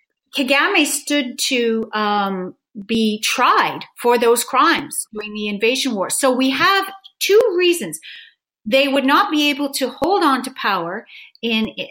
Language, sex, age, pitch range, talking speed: English, female, 40-59, 205-270 Hz, 145 wpm